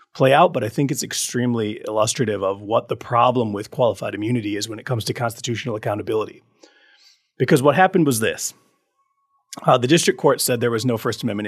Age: 30-49